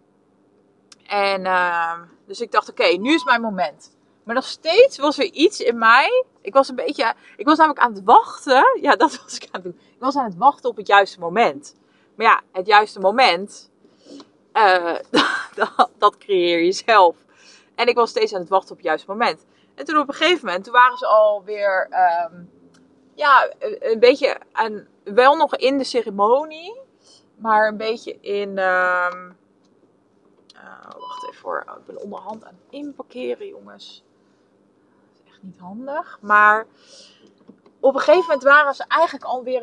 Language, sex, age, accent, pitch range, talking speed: Dutch, female, 20-39, Dutch, 185-290 Hz, 170 wpm